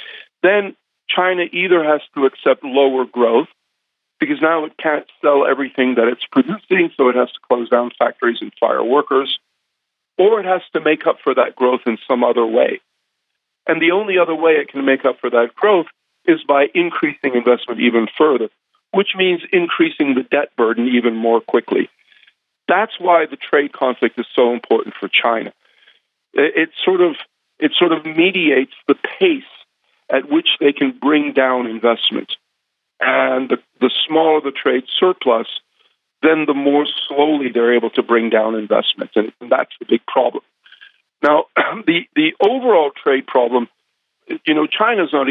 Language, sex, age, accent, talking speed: English, male, 50-69, American, 165 wpm